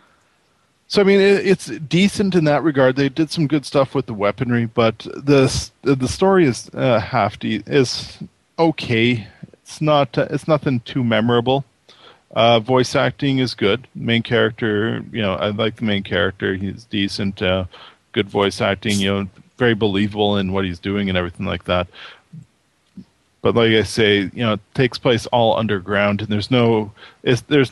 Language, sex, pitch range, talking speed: English, male, 100-130 Hz, 170 wpm